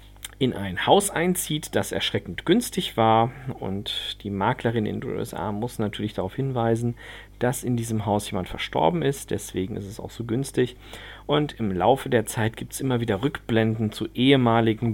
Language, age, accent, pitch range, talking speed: German, 40-59, German, 105-135 Hz, 175 wpm